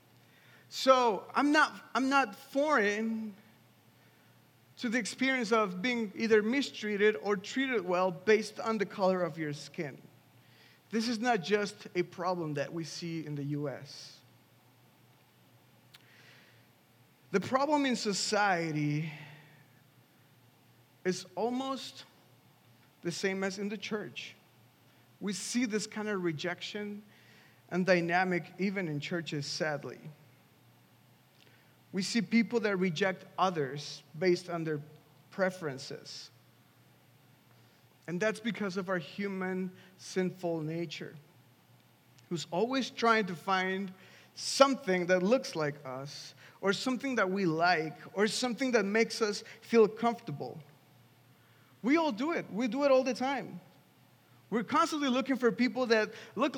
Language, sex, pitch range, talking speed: English, male, 160-230 Hz, 125 wpm